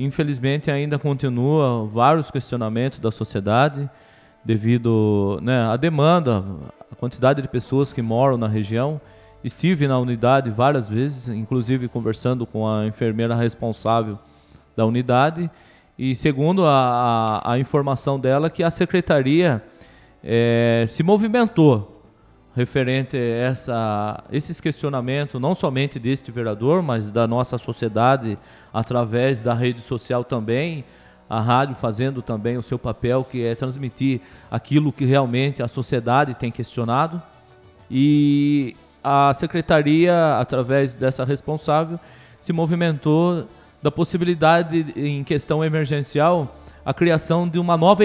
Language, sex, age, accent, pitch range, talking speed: Portuguese, male, 20-39, Brazilian, 115-150 Hz, 120 wpm